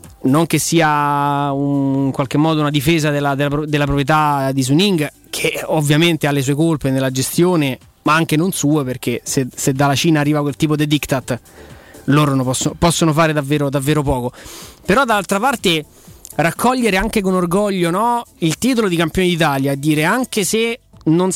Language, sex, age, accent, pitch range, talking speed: Italian, male, 30-49, native, 145-185 Hz, 175 wpm